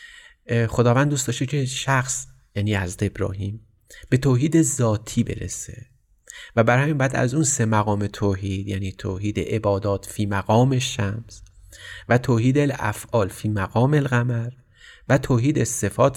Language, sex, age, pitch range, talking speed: Persian, male, 30-49, 100-125 Hz, 130 wpm